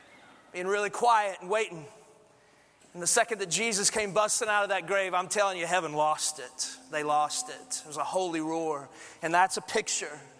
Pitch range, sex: 145-205 Hz, male